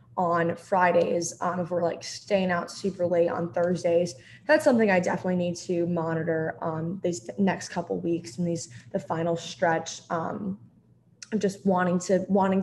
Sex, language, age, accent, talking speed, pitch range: female, English, 20-39, American, 165 wpm, 170-190 Hz